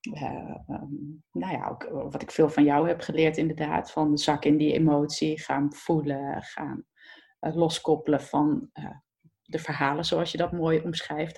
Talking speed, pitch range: 170 wpm, 155-185 Hz